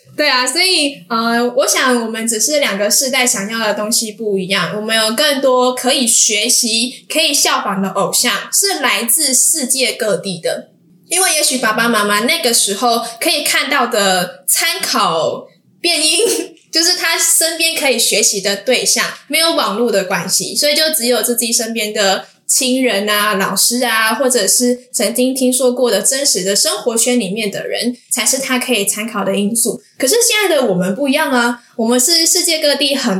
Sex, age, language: female, 10-29, Chinese